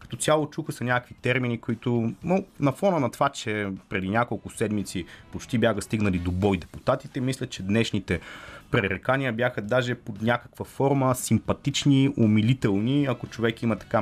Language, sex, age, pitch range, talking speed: Bulgarian, male, 30-49, 100-125 Hz, 160 wpm